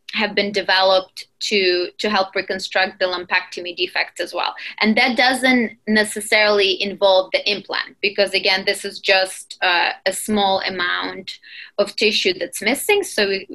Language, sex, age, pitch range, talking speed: English, female, 20-39, 190-230 Hz, 150 wpm